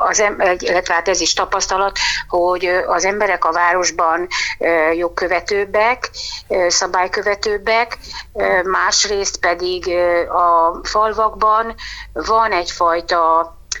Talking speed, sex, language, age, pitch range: 85 wpm, female, Hungarian, 60-79, 170-220 Hz